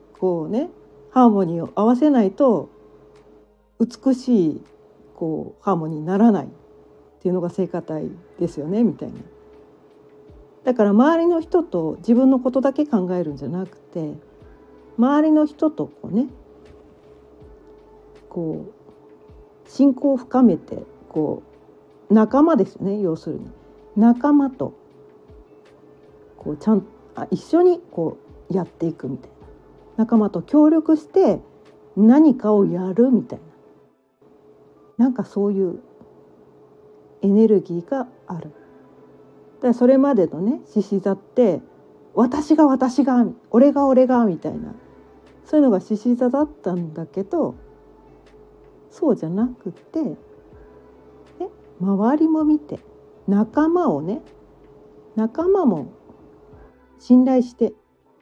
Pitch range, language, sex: 180-275 Hz, Japanese, female